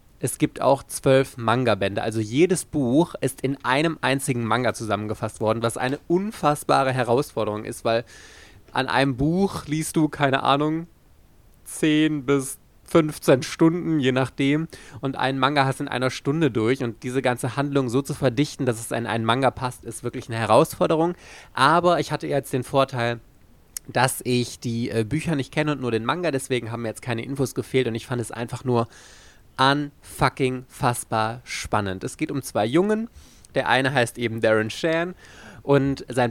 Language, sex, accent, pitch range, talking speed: German, male, German, 115-140 Hz, 175 wpm